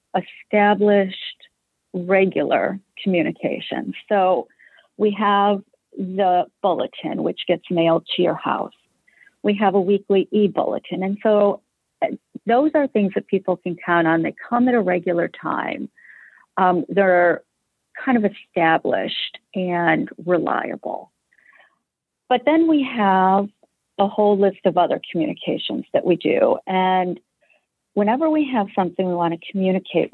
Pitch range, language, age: 180-215 Hz, English, 40-59